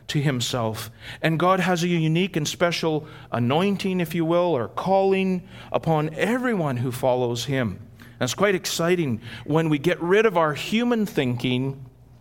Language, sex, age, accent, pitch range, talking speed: English, male, 40-59, American, 120-160 Hz, 155 wpm